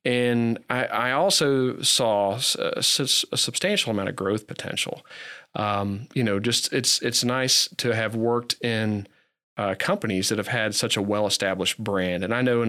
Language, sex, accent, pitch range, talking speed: English, male, American, 100-120 Hz, 170 wpm